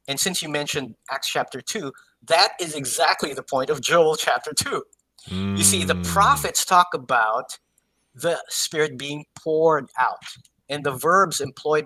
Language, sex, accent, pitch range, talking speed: English, male, American, 135-190 Hz, 155 wpm